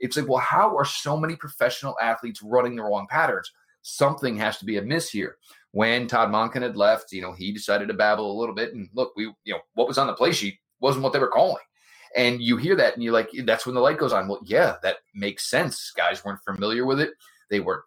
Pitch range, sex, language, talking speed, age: 110-135 Hz, male, English, 250 wpm, 30-49